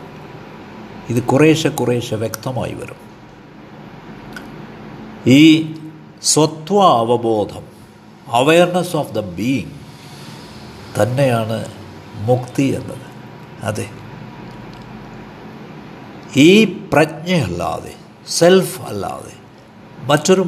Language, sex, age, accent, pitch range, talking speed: Malayalam, male, 60-79, native, 115-170 Hz, 60 wpm